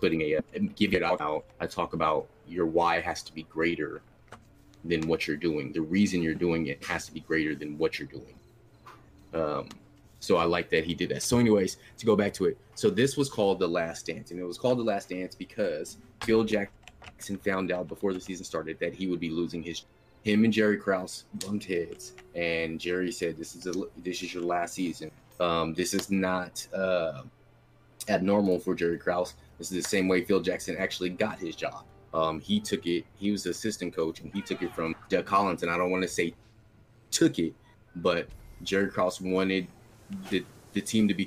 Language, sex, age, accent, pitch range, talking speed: English, male, 30-49, American, 85-105 Hz, 210 wpm